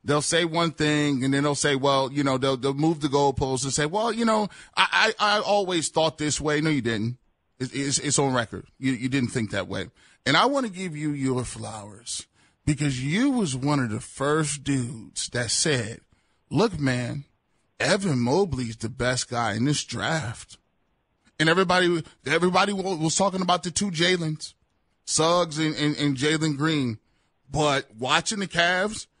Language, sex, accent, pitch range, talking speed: English, male, American, 130-170 Hz, 185 wpm